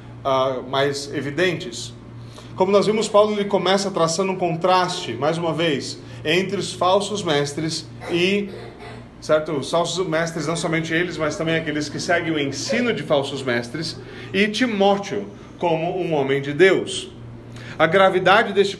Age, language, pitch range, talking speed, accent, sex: 40-59, Portuguese, 150-195 Hz, 150 wpm, Brazilian, male